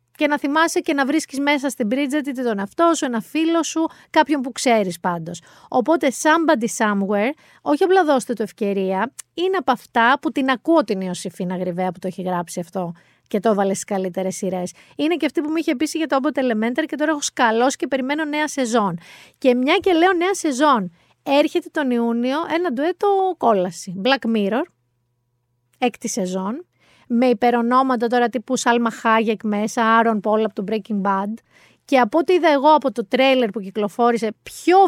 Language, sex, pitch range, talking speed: Greek, female, 210-300 Hz, 185 wpm